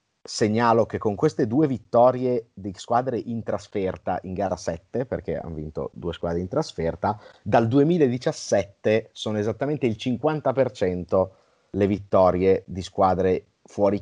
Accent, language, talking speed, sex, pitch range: native, Italian, 135 wpm, male, 95-130 Hz